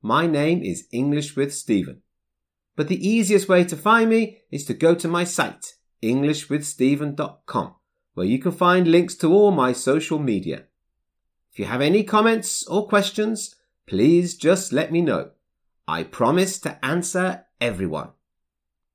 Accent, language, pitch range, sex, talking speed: British, English, 115-180 Hz, male, 150 wpm